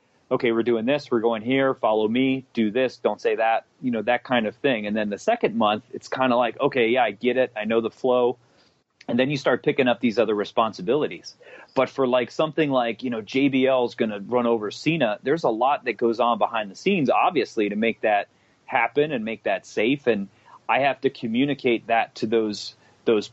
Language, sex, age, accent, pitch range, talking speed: English, male, 30-49, American, 110-135 Hz, 225 wpm